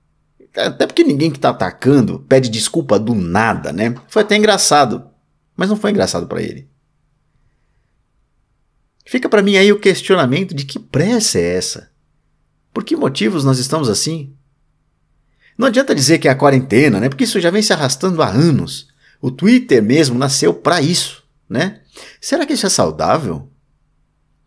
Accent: Brazilian